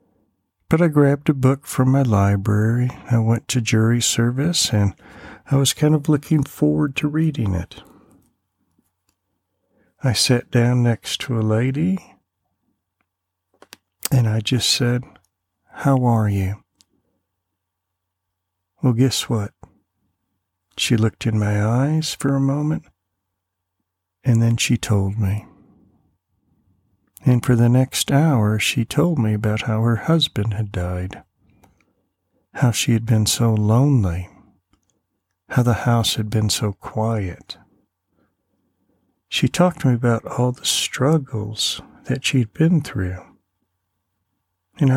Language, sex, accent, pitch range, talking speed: English, male, American, 95-130 Hz, 125 wpm